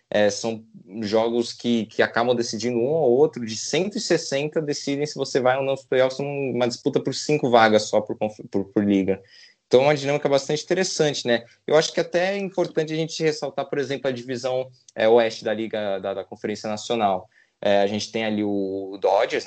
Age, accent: 20-39, Brazilian